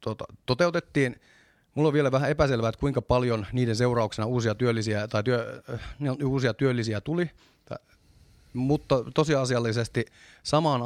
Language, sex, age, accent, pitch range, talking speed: Finnish, male, 30-49, native, 105-135 Hz, 120 wpm